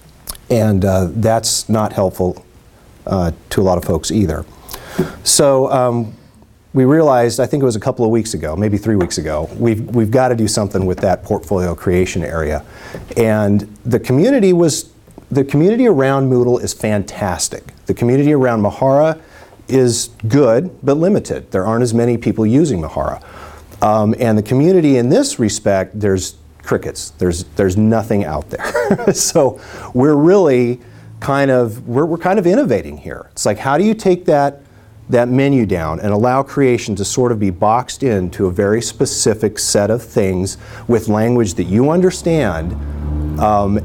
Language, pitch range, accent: English, 100-135 Hz, American